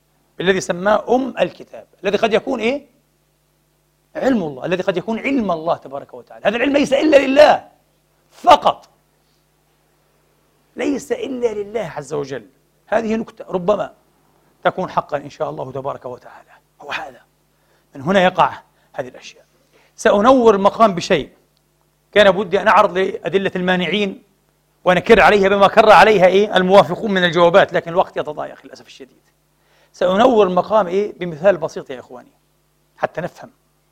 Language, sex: English, male